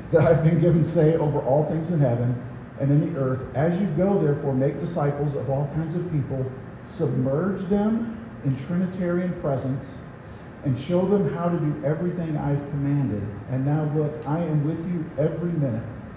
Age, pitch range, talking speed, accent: 50-69, 125-155 Hz, 180 wpm, American